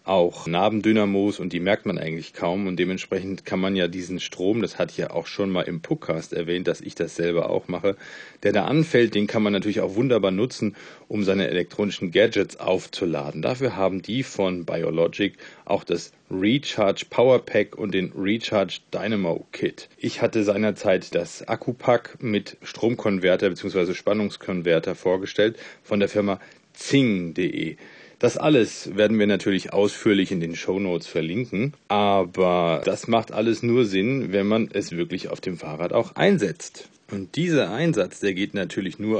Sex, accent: male, German